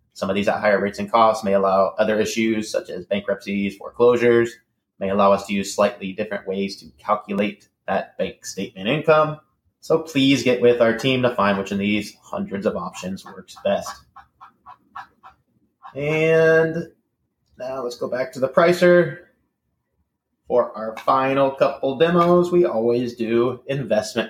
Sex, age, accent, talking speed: male, 30-49, American, 155 wpm